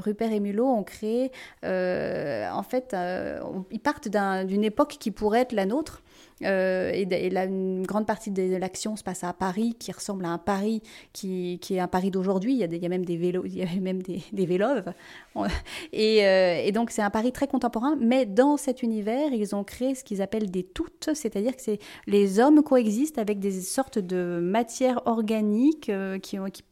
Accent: French